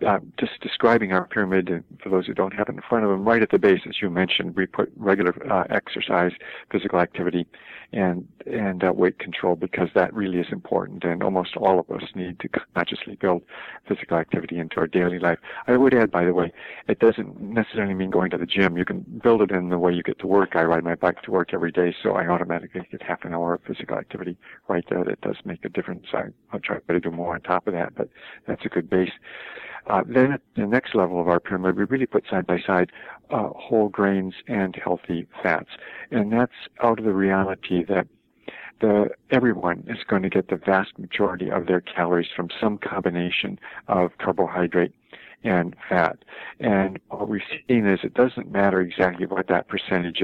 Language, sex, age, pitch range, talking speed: English, male, 50-69, 90-100 Hz, 210 wpm